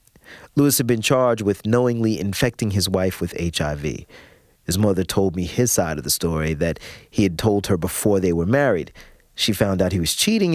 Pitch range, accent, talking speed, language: 95-135 Hz, American, 200 wpm, English